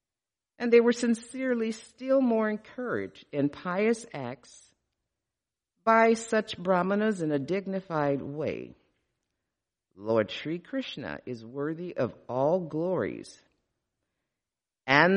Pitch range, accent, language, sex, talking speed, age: 140-190 Hz, American, English, female, 105 wpm, 50-69